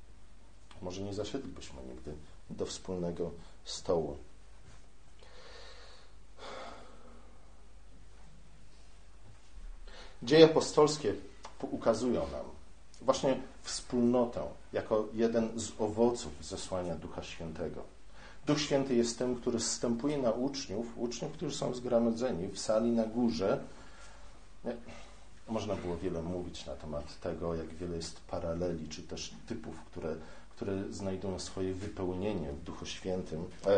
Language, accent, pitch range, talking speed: Polish, native, 90-115 Hz, 105 wpm